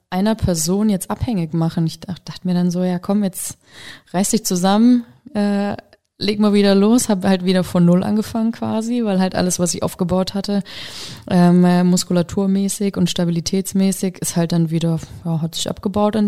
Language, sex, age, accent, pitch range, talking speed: German, female, 20-39, German, 170-195 Hz, 175 wpm